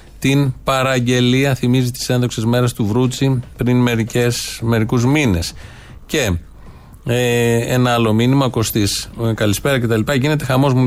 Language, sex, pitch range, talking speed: Greek, male, 120-150 Hz, 115 wpm